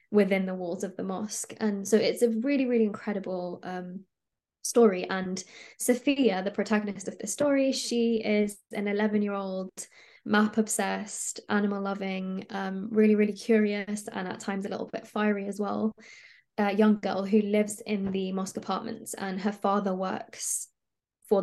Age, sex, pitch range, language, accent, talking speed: 20-39, female, 195-220 Hz, English, British, 170 wpm